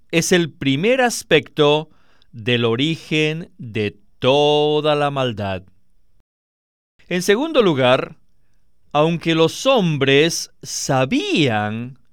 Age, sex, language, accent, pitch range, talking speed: 50-69, male, Spanish, Mexican, 125-185 Hz, 85 wpm